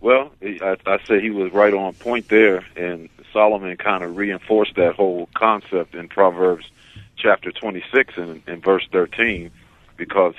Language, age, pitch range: English, 50-69, 90-110 Hz